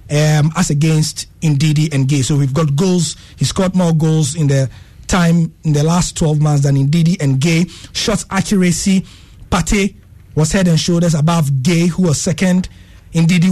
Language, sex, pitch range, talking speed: English, male, 135-185 Hz, 175 wpm